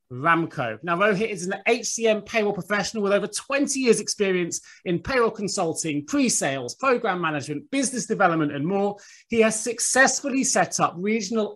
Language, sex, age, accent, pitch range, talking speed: English, male, 30-49, British, 160-220 Hz, 150 wpm